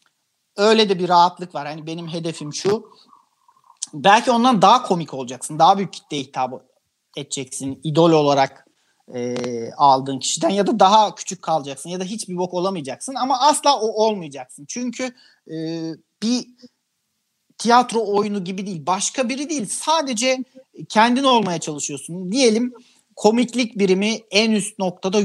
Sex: male